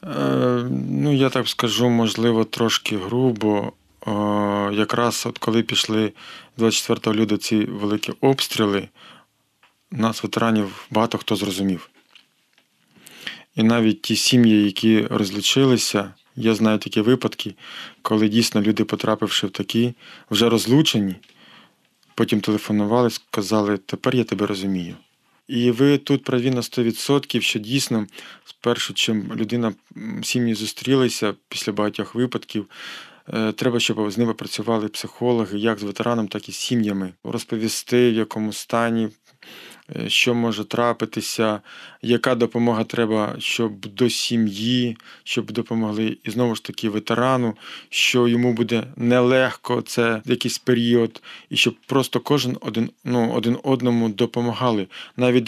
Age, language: 20-39, Ukrainian